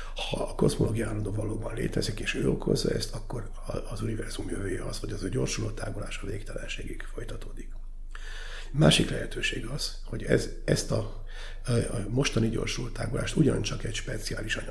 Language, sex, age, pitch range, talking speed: Hungarian, male, 50-69, 110-120 Hz, 145 wpm